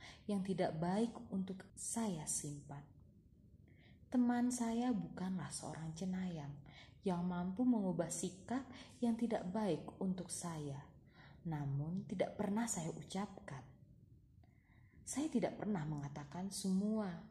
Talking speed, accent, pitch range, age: 105 wpm, native, 150-205 Hz, 20-39